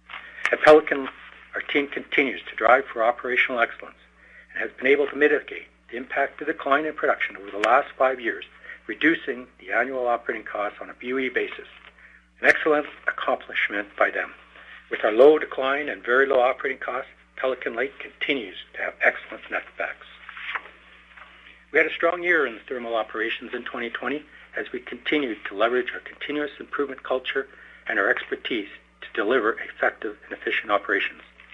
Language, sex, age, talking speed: English, male, 60-79, 165 wpm